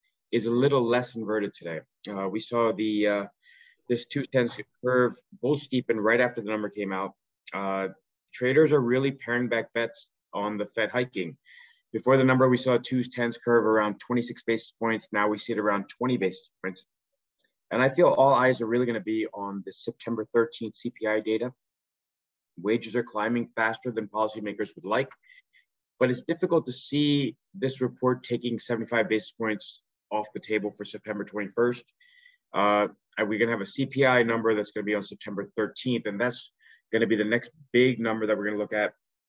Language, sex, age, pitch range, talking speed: English, male, 30-49, 105-125 Hz, 185 wpm